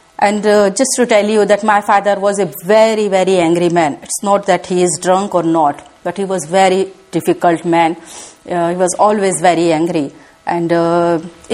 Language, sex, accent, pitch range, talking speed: English, female, Indian, 175-220 Hz, 200 wpm